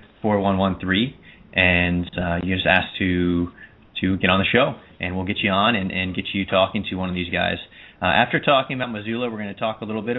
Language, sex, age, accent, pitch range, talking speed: English, male, 30-49, American, 90-110 Hz, 250 wpm